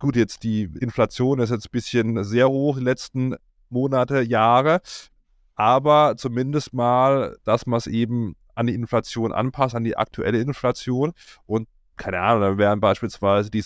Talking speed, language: 165 wpm, German